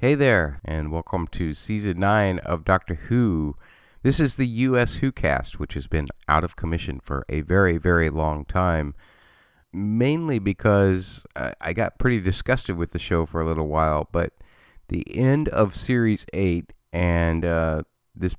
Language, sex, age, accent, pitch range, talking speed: English, male, 30-49, American, 80-105 Hz, 165 wpm